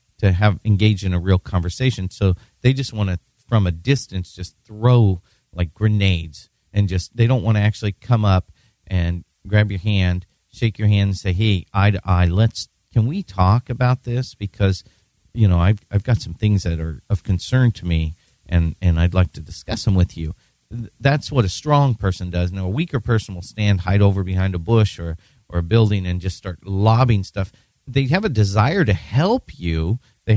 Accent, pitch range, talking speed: American, 90-115 Hz, 205 wpm